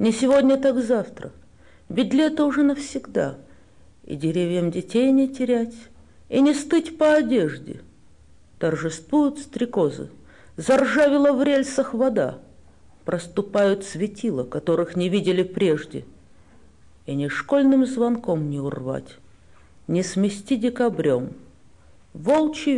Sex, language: female, English